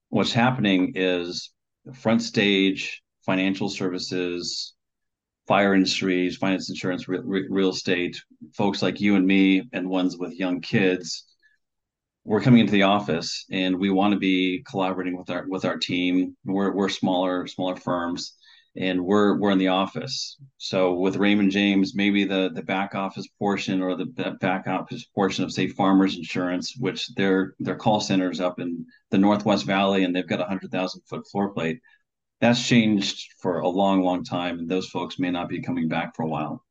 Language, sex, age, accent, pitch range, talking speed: English, male, 40-59, American, 90-100 Hz, 175 wpm